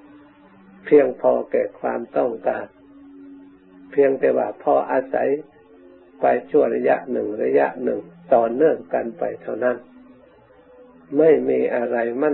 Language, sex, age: Thai, male, 60-79